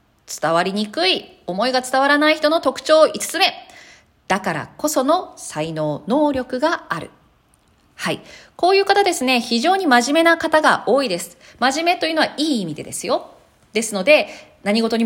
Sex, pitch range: female, 200-335 Hz